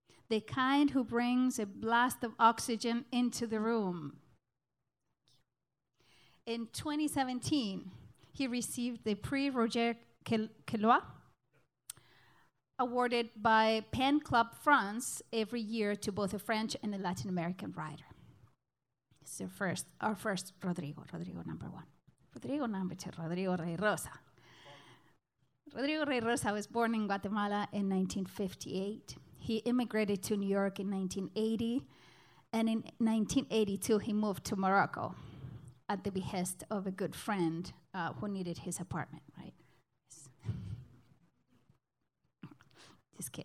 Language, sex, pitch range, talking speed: English, female, 180-230 Hz, 120 wpm